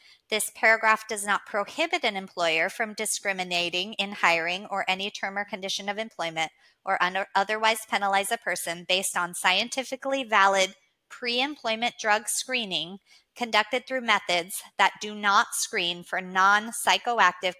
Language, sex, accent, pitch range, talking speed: English, female, American, 190-230 Hz, 135 wpm